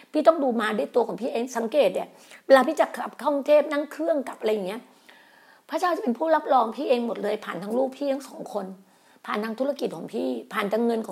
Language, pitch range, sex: Thai, 215-280 Hz, female